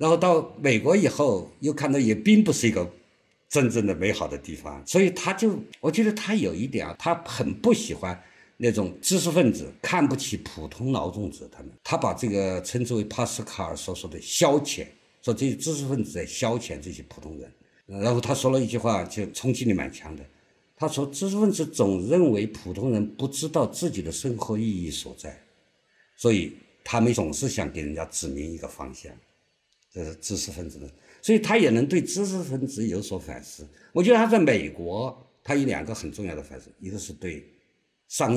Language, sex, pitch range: Chinese, male, 90-145 Hz